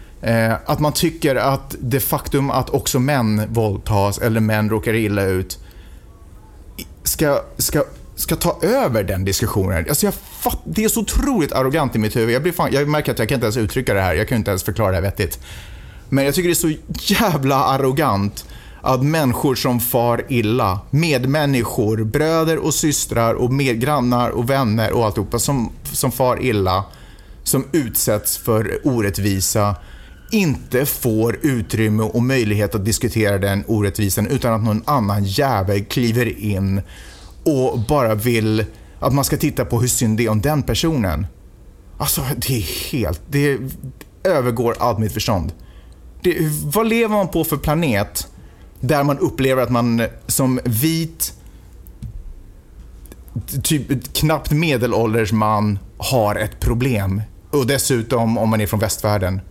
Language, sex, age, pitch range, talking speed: Swedish, male, 30-49, 105-140 Hz, 155 wpm